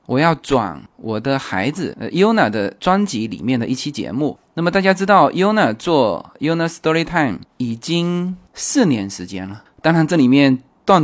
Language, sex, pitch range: Chinese, male, 125-185 Hz